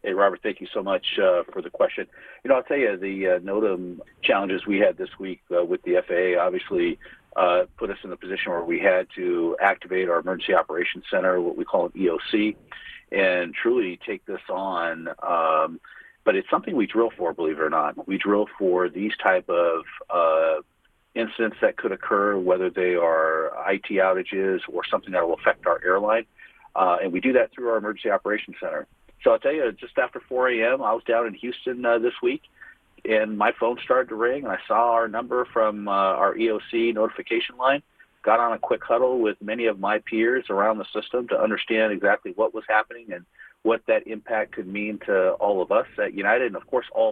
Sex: male